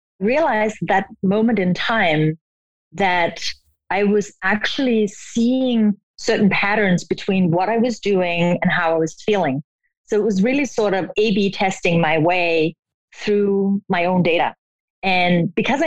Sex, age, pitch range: female, 30-49, 170-215 Hz